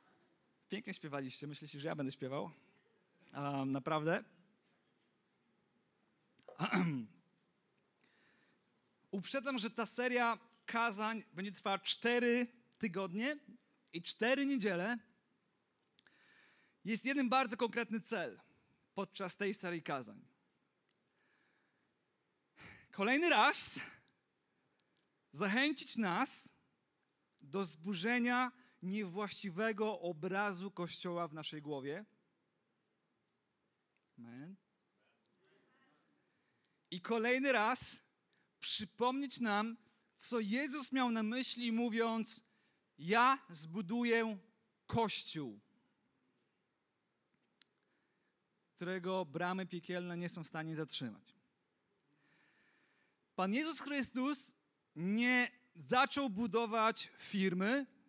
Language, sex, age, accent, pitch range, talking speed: Polish, male, 40-59, native, 180-245 Hz, 75 wpm